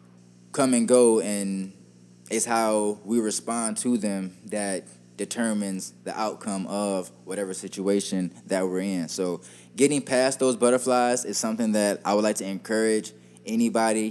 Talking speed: 145 wpm